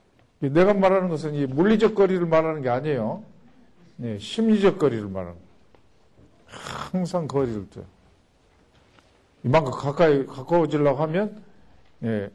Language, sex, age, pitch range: Korean, male, 50-69, 110-155 Hz